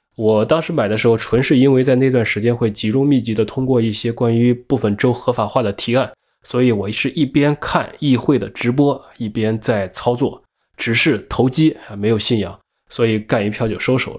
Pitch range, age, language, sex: 105-130 Hz, 20-39, Chinese, male